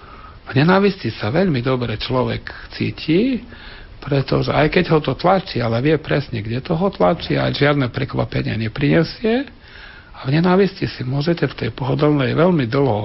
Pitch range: 120-165 Hz